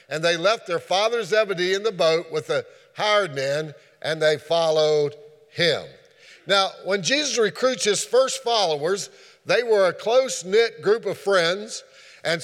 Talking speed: 155 wpm